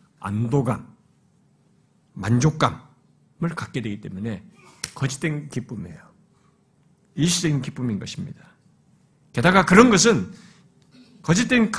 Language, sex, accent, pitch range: Korean, male, native, 145-215 Hz